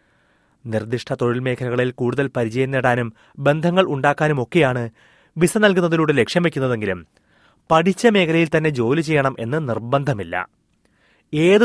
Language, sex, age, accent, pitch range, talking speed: Malayalam, male, 30-49, native, 115-155 Hz, 105 wpm